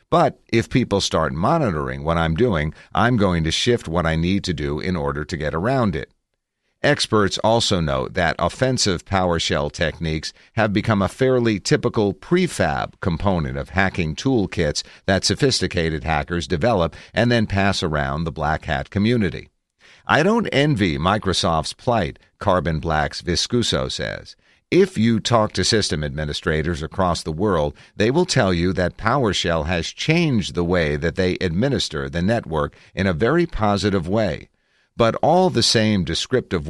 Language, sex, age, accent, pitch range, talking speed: English, male, 50-69, American, 80-110 Hz, 155 wpm